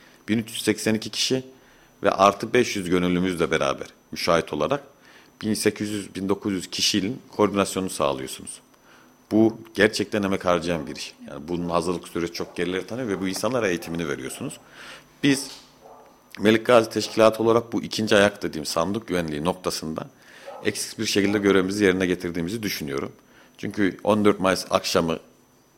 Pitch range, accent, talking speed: 90-110 Hz, native, 125 wpm